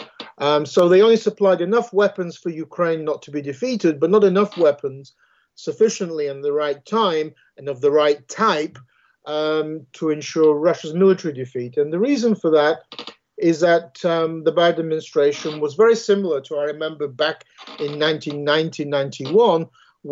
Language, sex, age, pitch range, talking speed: English, male, 50-69, 140-175 Hz, 160 wpm